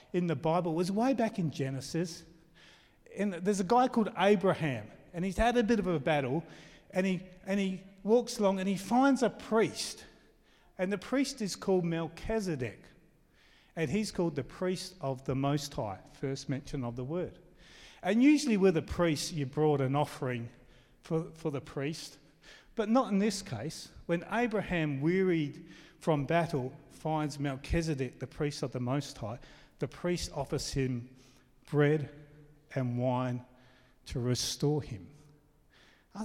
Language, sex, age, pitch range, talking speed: English, male, 40-59, 135-175 Hz, 155 wpm